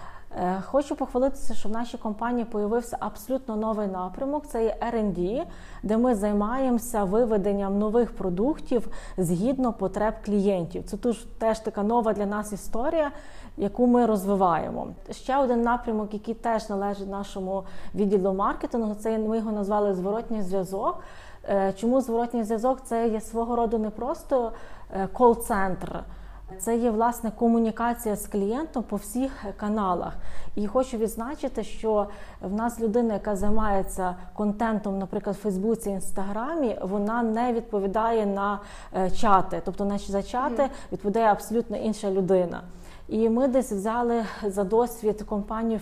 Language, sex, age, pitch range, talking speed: Ukrainian, female, 20-39, 200-235 Hz, 130 wpm